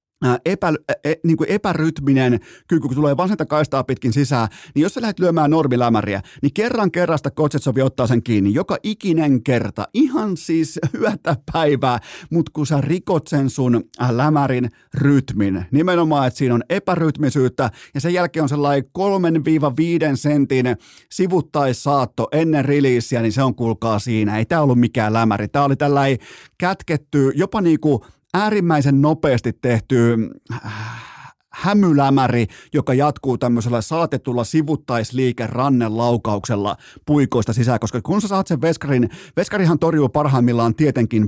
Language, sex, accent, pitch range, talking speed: Finnish, male, native, 120-155 Hz, 135 wpm